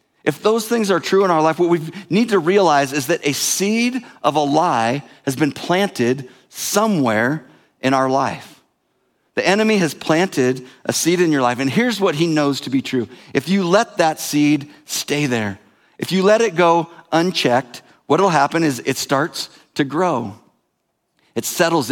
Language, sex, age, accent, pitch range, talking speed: English, male, 40-59, American, 135-180 Hz, 185 wpm